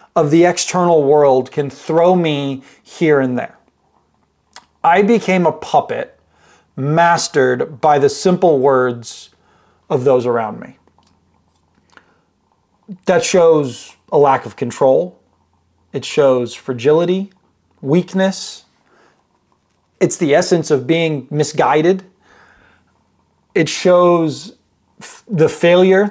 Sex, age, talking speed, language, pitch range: male, 30-49, 100 wpm, English, 140-180 Hz